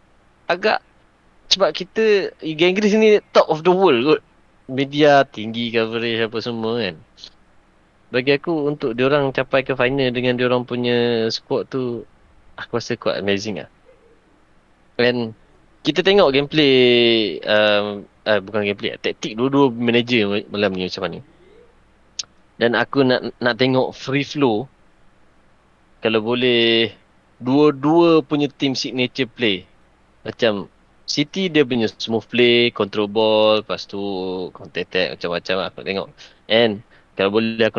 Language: Indonesian